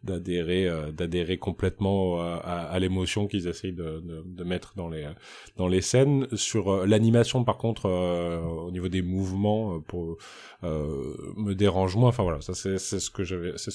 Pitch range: 90-110 Hz